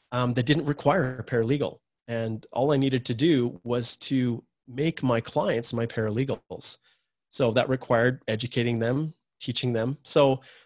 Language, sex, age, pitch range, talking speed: English, male, 40-59, 115-145 Hz, 150 wpm